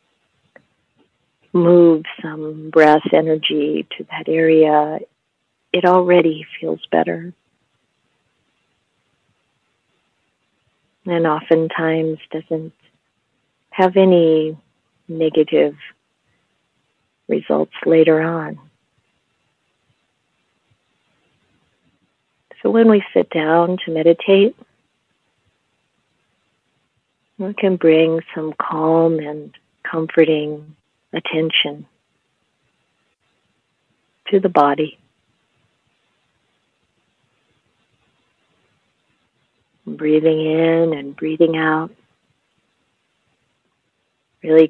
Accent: American